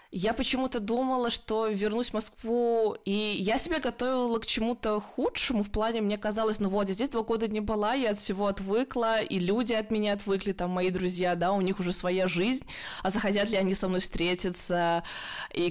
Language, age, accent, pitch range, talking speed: Russian, 20-39, native, 170-205 Hz, 200 wpm